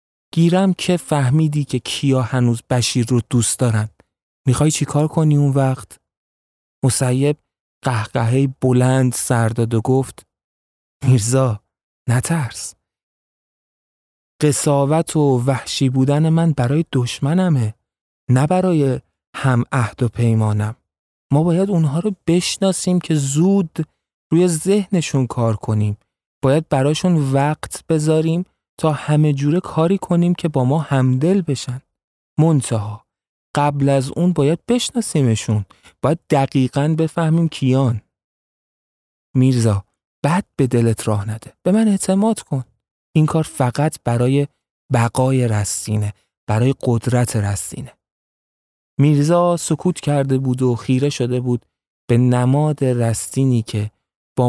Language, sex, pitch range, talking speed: Persian, male, 115-155 Hz, 115 wpm